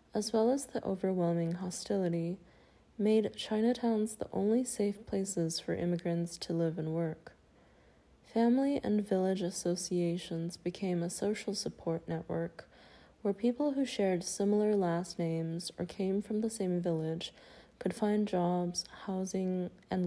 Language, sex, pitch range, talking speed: English, female, 170-210 Hz, 135 wpm